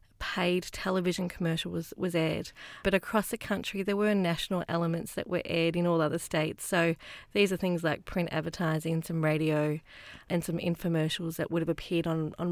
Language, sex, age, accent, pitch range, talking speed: English, female, 30-49, Australian, 165-195 Hz, 185 wpm